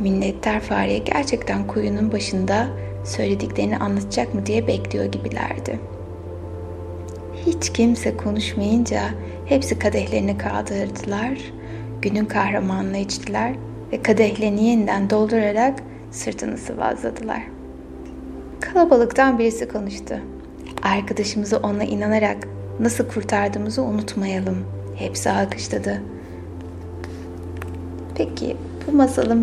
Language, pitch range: Turkish, 95-120 Hz